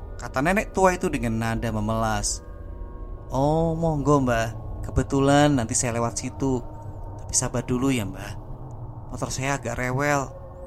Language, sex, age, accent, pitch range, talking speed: Indonesian, male, 20-39, native, 105-130 Hz, 135 wpm